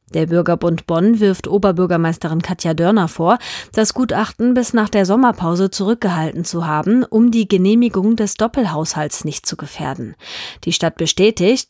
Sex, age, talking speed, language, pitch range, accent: female, 30-49, 145 wpm, German, 165-210 Hz, German